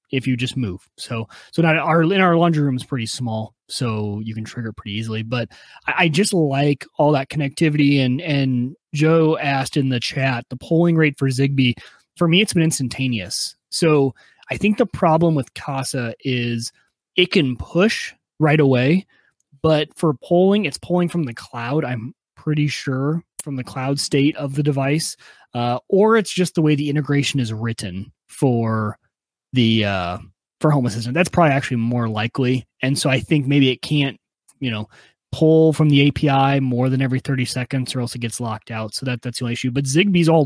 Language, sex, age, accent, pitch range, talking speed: English, male, 30-49, American, 120-160 Hz, 195 wpm